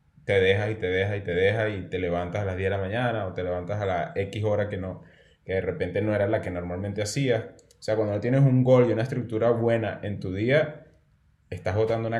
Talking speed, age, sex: 255 wpm, 20-39, male